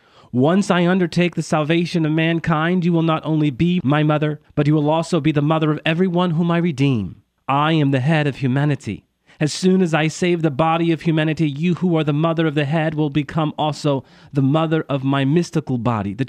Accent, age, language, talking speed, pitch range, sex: American, 30-49, English, 215 wpm, 135-165 Hz, male